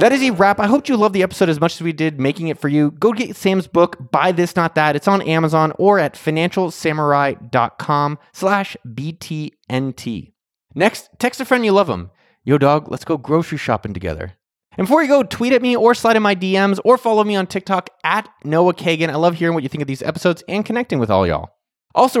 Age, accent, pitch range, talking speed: 20-39, American, 150-200 Hz, 225 wpm